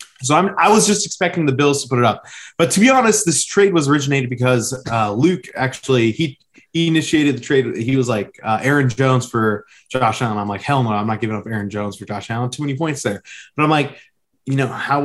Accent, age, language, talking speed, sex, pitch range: American, 20-39, English, 245 wpm, male, 110-130 Hz